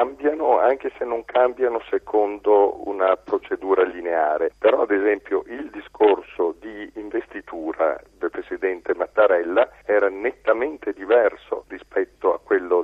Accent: native